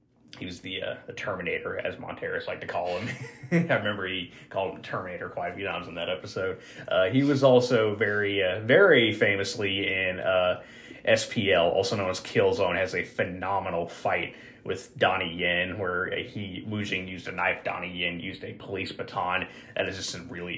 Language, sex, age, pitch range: English, male, 30-49, 95-125 Hz